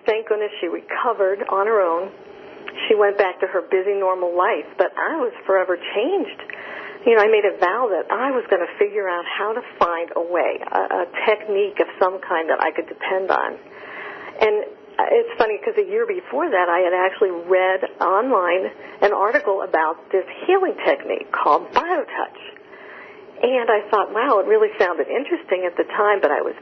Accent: American